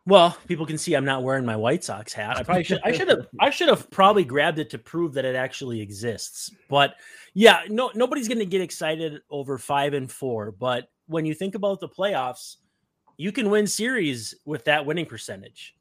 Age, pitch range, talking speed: 30-49, 125-165 Hz, 200 wpm